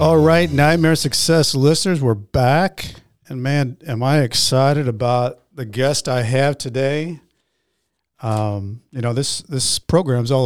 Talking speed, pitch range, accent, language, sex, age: 145 wpm, 115-140 Hz, American, English, male, 50-69